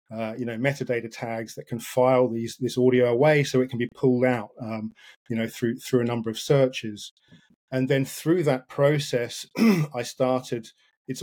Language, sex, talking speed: English, male, 185 wpm